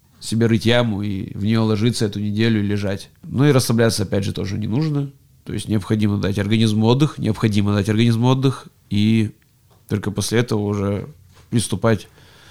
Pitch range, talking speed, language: 100-120 Hz, 170 wpm, Russian